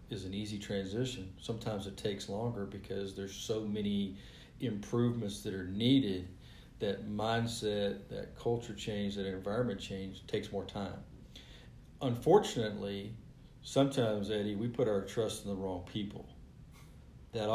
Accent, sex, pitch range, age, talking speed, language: American, male, 100-120 Hz, 40-59, 135 wpm, English